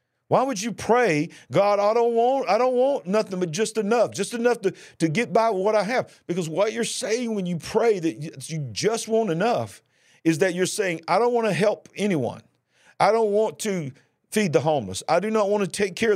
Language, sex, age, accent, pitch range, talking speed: English, male, 50-69, American, 130-195 Hz, 225 wpm